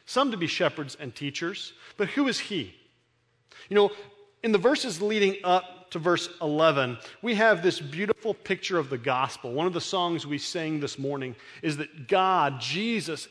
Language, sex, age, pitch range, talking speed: English, male, 40-59, 180-240 Hz, 180 wpm